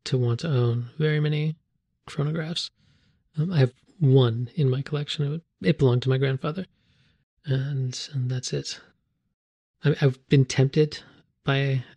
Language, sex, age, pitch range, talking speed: English, male, 20-39, 125-155 Hz, 140 wpm